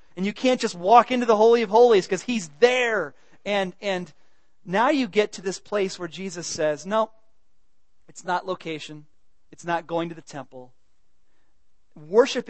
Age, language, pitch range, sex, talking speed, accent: 40-59, English, 150-220 Hz, male, 170 wpm, American